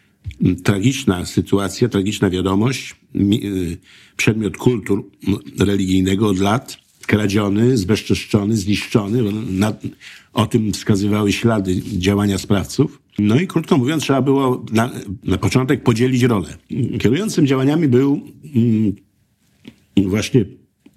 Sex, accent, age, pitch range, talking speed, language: male, native, 50-69, 95-120 Hz, 95 wpm, Polish